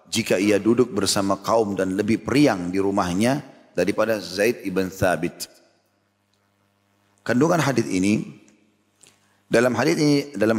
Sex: male